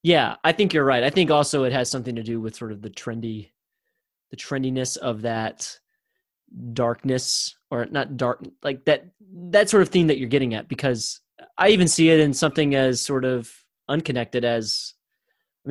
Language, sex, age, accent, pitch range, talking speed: English, male, 30-49, American, 120-150 Hz, 185 wpm